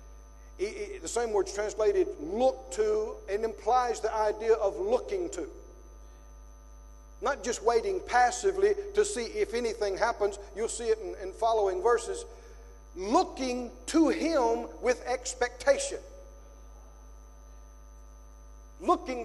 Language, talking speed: English, 110 wpm